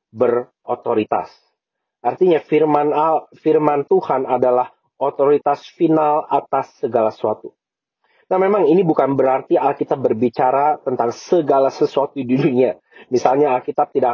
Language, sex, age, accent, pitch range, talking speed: English, male, 40-59, Indonesian, 125-150 Hz, 115 wpm